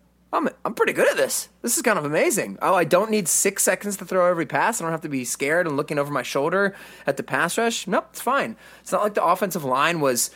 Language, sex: English, male